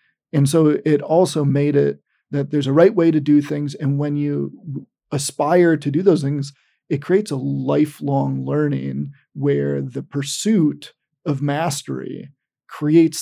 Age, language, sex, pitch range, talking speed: 40-59, English, male, 135-150 Hz, 150 wpm